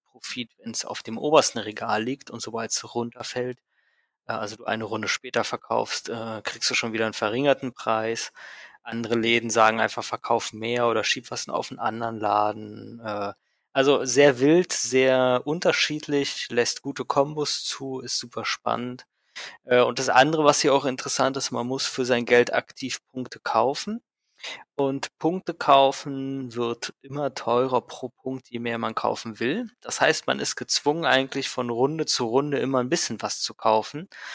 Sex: male